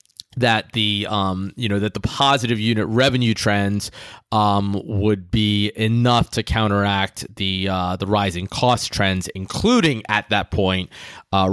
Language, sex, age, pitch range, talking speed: English, male, 20-39, 90-115 Hz, 145 wpm